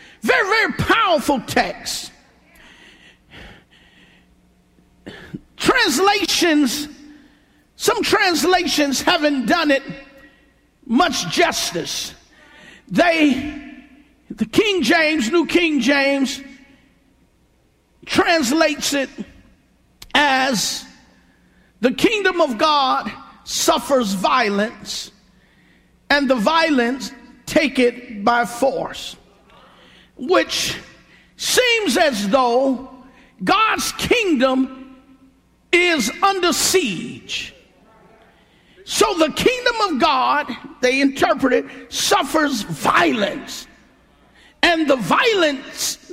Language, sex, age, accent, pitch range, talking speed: English, male, 50-69, American, 260-340 Hz, 75 wpm